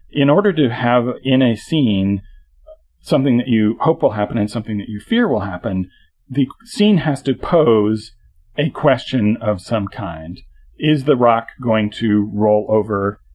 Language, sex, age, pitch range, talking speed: English, male, 40-59, 105-130 Hz, 165 wpm